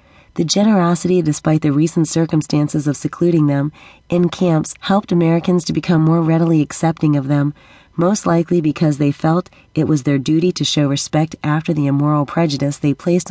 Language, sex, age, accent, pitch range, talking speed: English, female, 30-49, American, 150-175 Hz, 170 wpm